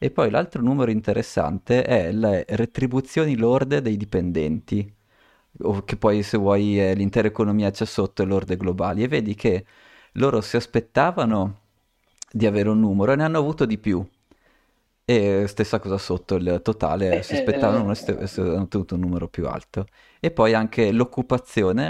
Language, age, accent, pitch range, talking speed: Italian, 30-49, native, 95-115 Hz, 155 wpm